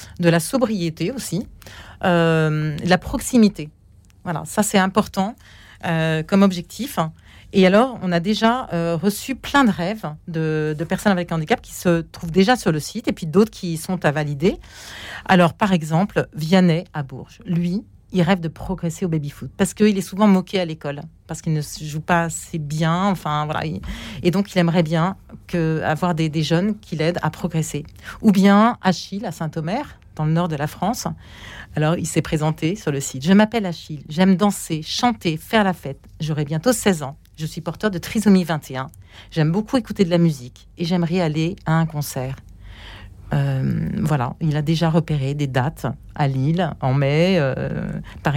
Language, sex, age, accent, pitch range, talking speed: French, female, 40-59, French, 155-190 Hz, 190 wpm